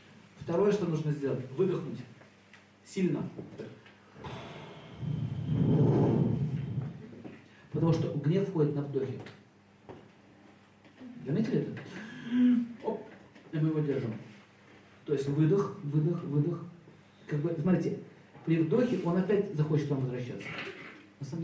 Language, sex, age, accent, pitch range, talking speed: Russian, male, 40-59, native, 130-170 Hz, 105 wpm